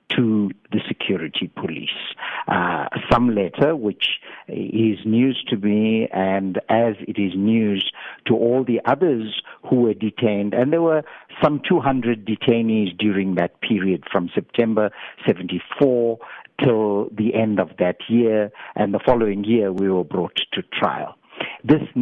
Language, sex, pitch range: English, male, 105-130 Hz